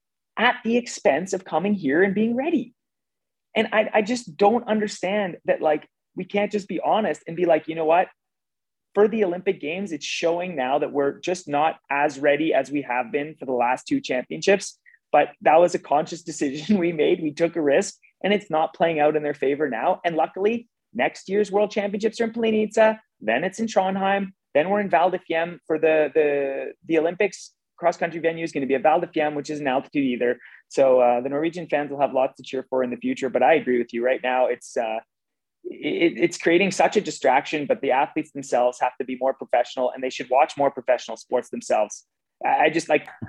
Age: 30-49